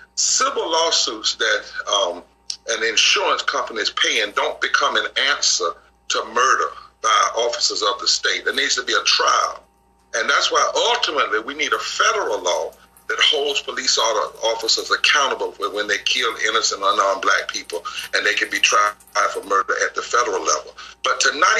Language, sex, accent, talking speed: English, male, American, 170 wpm